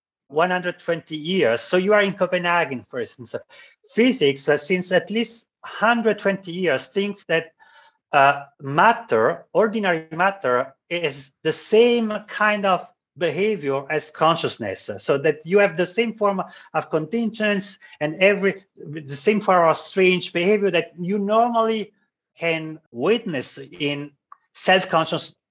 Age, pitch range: 40-59, 155-195 Hz